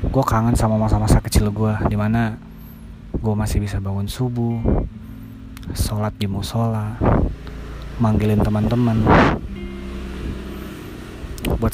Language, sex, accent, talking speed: Indonesian, male, native, 85 wpm